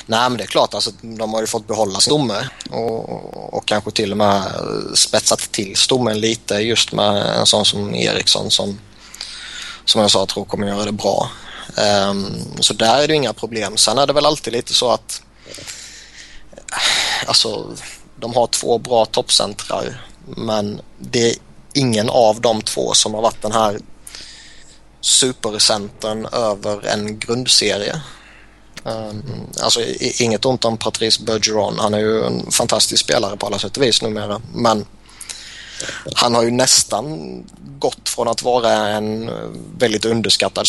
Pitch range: 105-115 Hz